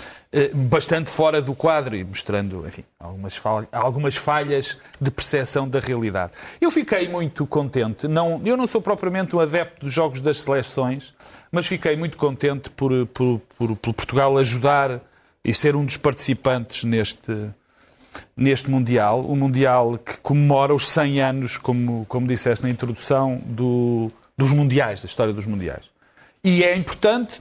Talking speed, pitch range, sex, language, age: 150 wpm, 125-160 Hz, male, Portuguese, 40-59